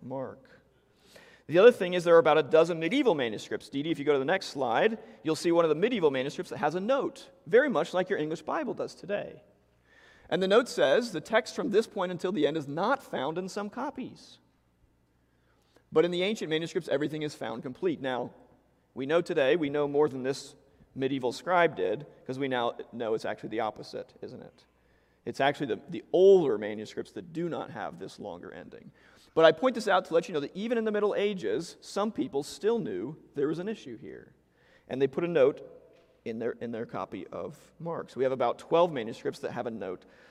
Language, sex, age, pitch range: English, male, 40-59, 135-190 Hz